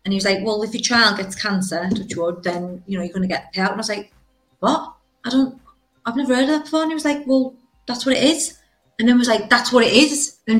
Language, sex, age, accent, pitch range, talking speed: English, female, 30-49, British, 185-230 Hz, 290 wpm